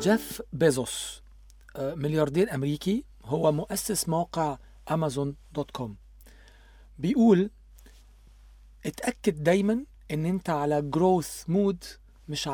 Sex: male